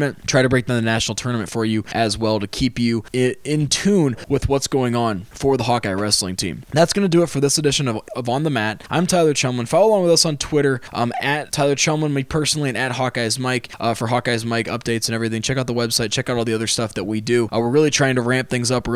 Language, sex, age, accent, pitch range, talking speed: English, male, 20-39, American, 115-135 Hz, 275 wpm